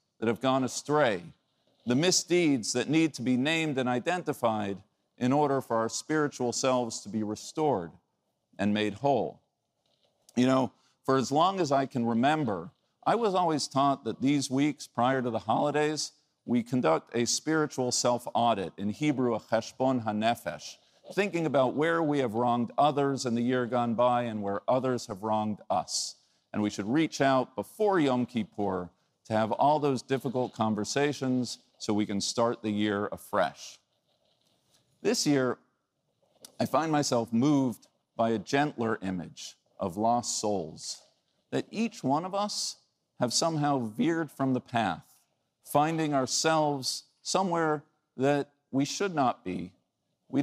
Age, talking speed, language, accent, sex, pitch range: 50-69, 150 wpm, English, American, male, 115-145 Hz